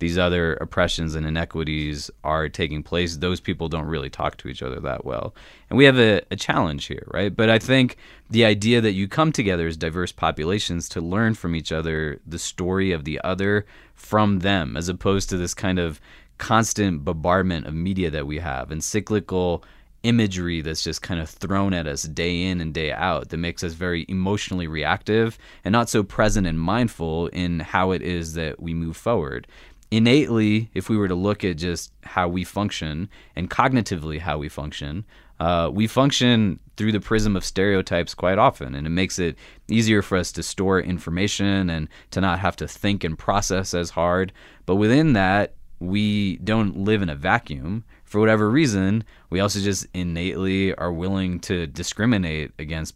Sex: male